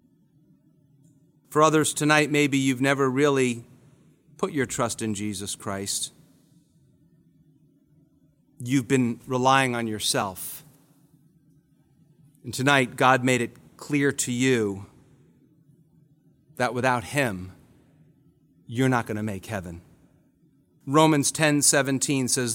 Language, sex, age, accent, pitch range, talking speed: English, male, 40-59, American, 125-150 Hz, 105 wpm